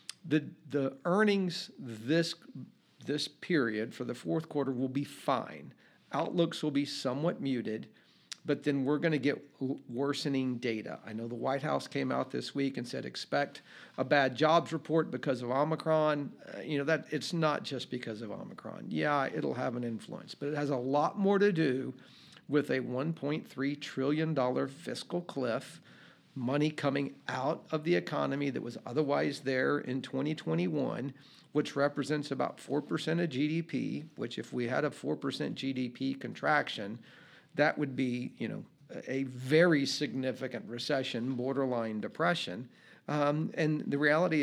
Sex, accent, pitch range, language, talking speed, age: male, American, 130-155 Hz, English, 160 wpm, 50-69